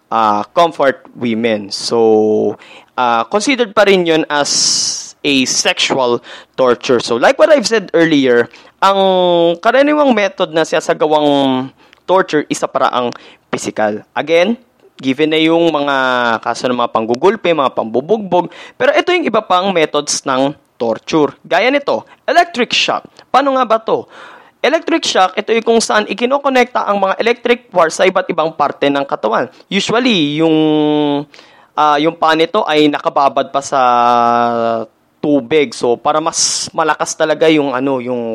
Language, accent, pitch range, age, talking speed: Filipino, native, 135-215 Hz, 20-39, 140 wpm